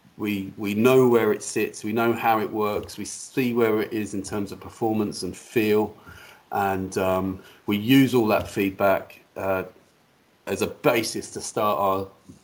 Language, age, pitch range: English, 40-59, 100-120 Hz